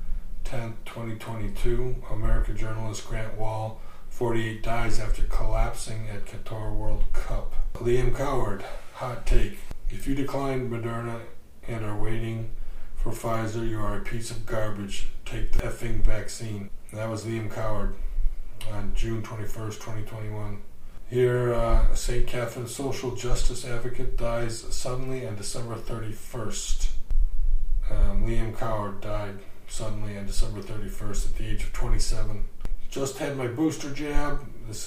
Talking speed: 130 wpm